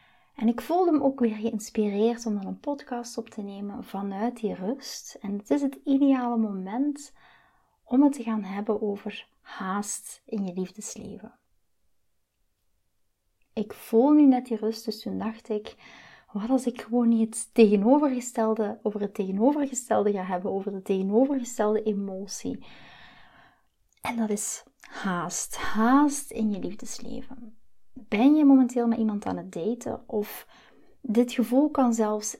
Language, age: Dutch, 30-49